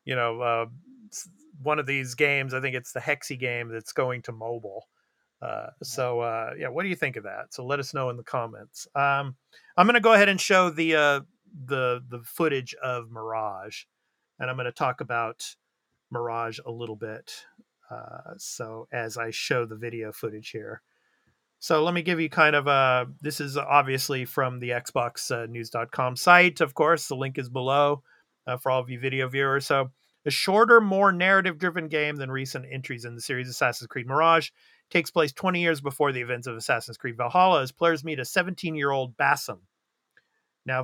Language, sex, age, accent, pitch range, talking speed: English, male, 40-59, American, 120-155 Hz, 190 wpm